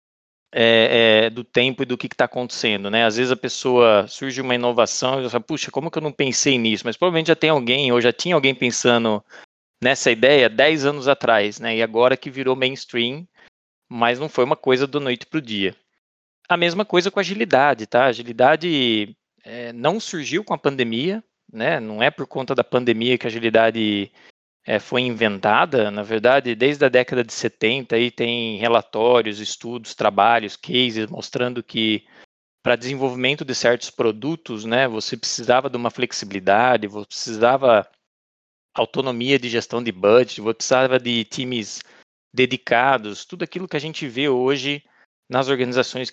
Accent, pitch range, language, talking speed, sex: Brazilian, 115-135 Hz, Portuguese, 175 wpm, male